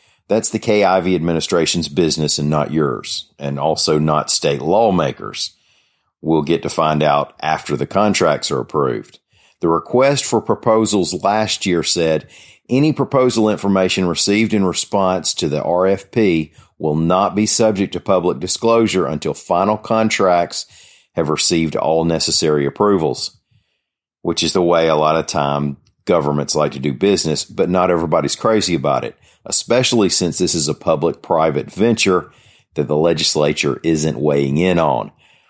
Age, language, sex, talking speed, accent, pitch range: 40-59, English, male, 145 wpm, American, 80-100 Hz